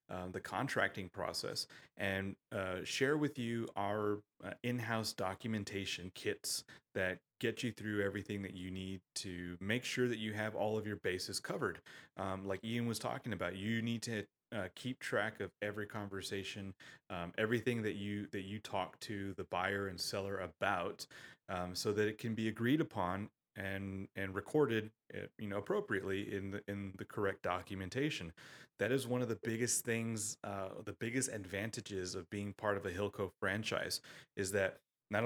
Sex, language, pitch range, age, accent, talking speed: male, English, 95-115 Hz, 30-49, American, 175 wpm